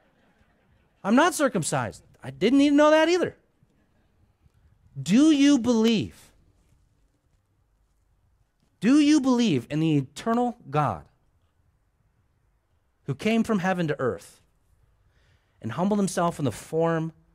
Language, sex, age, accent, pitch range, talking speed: English, male, 40-59, American, 105-170 Hz, 105 wpm